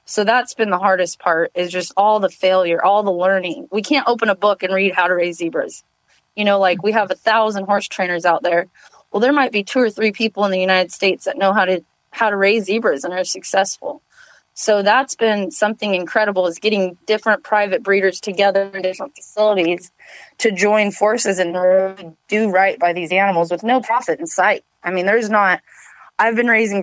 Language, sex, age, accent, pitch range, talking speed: English, female, 20-39, American, 185-225 Hz, 210 wpm